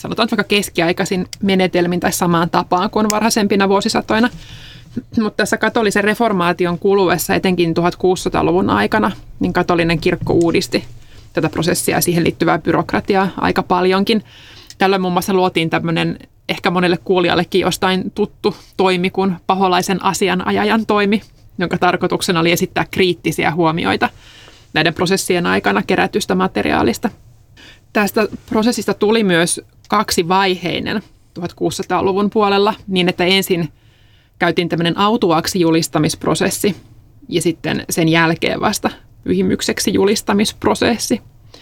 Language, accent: Finnish, native